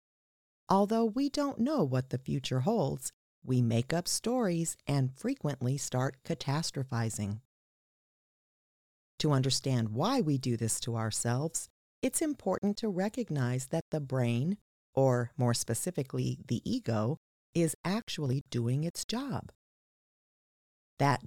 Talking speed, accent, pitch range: 120 wpm, American, 125-195 Hz